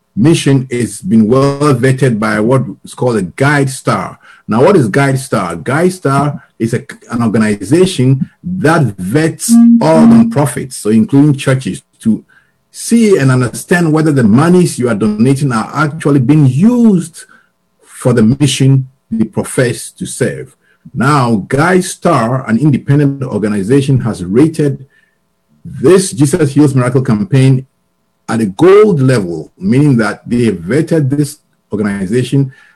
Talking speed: 135 wpm